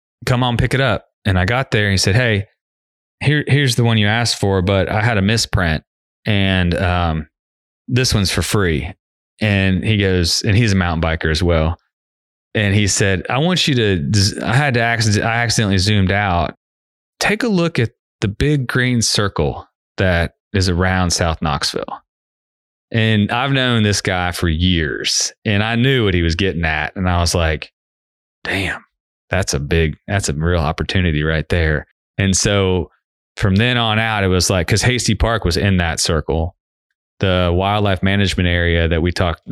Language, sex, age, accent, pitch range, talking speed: English, male, 20-39, American, 85-110 Hz, 180 wpm